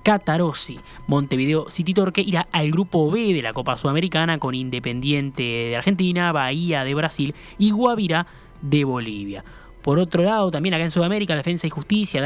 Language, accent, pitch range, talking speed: Spanish, Argentinian, 145-180 Hz, 165 wpm